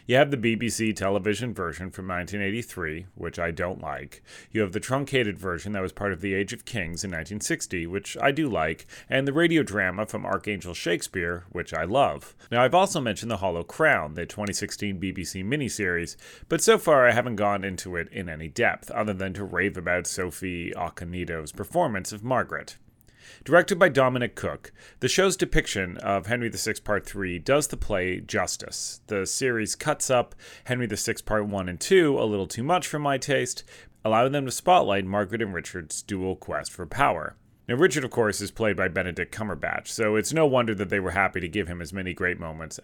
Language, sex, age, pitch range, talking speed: English, male, 30-49, 90-120 Hz, 195 wpm